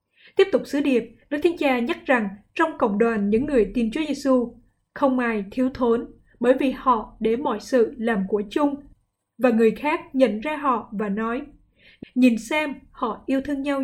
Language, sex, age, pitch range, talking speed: Vietnamese, female, 20-39, 225-275 Hz, 190 wpm